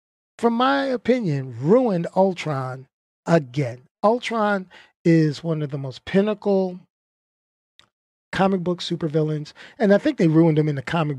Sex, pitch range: male, 150-195 Hz